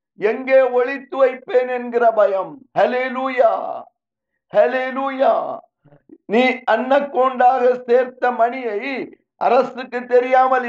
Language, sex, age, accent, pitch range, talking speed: Tamil, male, 50-69, native, 245-270 Hz, 65 wpm